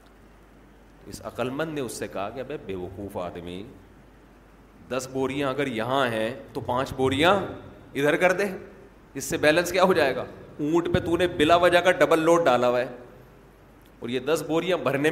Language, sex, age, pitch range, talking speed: Urdu, male, 40-59, 120-160 Hz, 175 wpm